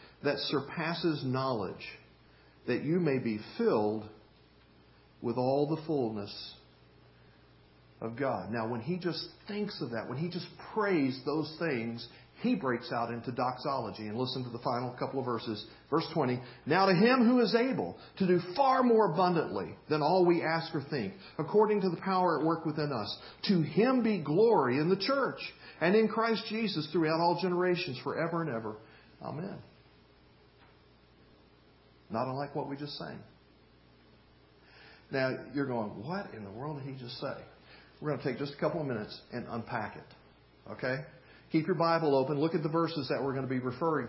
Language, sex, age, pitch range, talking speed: English, male, 50-69, 115-170 Hz, 175 wpm